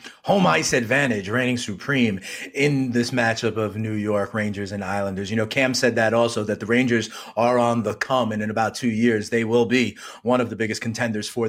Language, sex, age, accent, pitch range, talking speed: English, male, 30-49, American, 125-205 Hz, 215 wpm